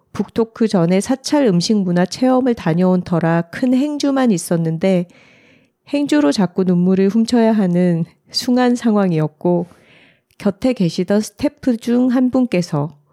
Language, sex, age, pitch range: Korean, female, 40-59, 175-220 Hz